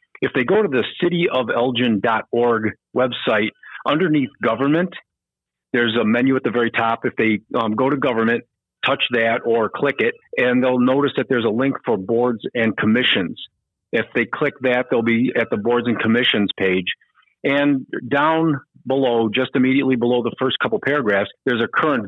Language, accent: English, American